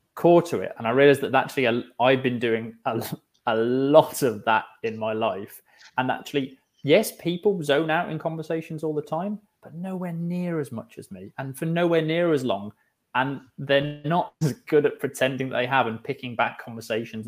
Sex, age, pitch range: male, 20-39, 110-150 Hz